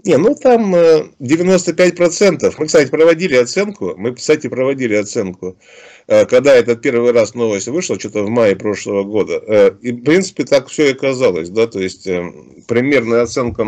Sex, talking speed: male, 155 wpm